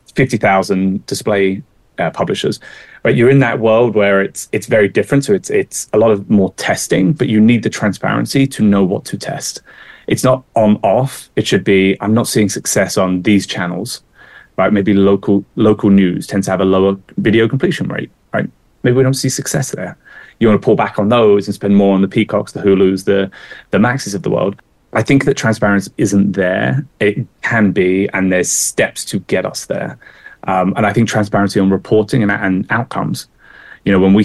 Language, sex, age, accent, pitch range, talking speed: English, male, 30-49, British, 95-115 Hz, 205 wpm